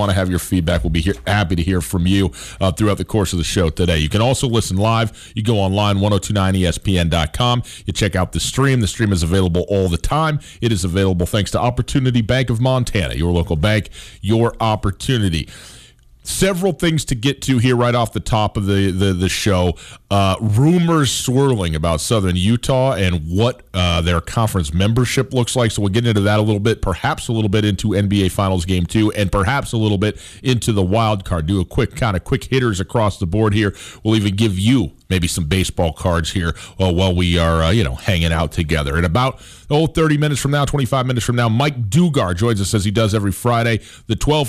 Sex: male